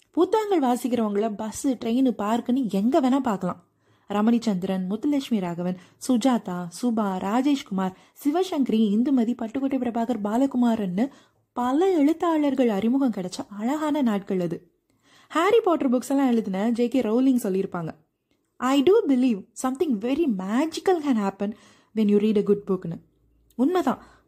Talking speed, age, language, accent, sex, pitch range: 120 wpm, 20-39, Tamil, native, female, 205-270 Hz